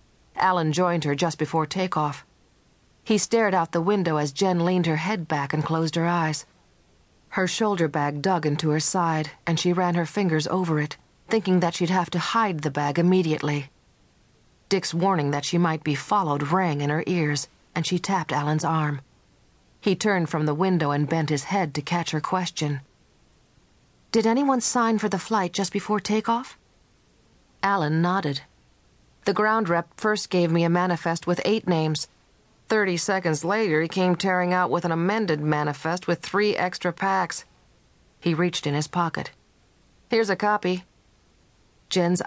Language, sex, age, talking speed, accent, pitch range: English, female, 40-59, 170 wpm, American, 150-185 Hz